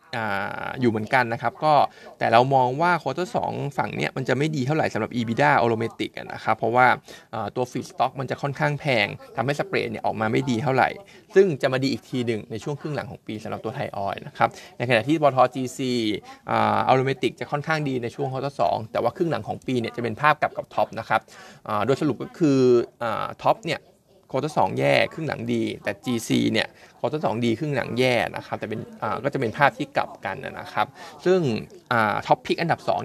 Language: Thai